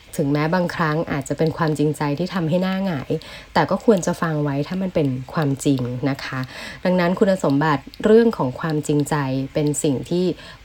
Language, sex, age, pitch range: Thai, female, 20-39, 140-175 Hz